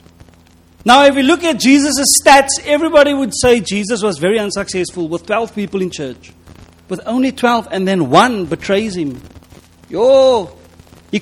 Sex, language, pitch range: male, English, 155-220 Hz